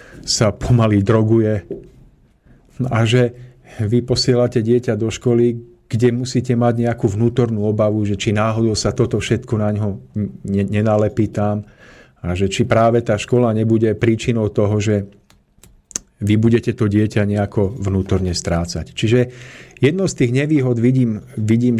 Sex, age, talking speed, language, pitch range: male, 50-69, 140 wpm, Slovak, 105-125 Hz